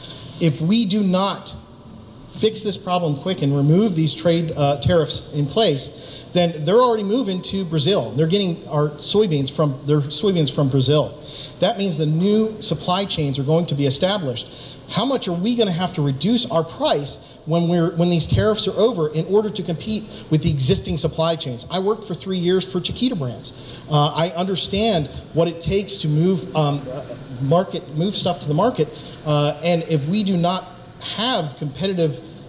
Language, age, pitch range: English, 40-59, 145-185 Hz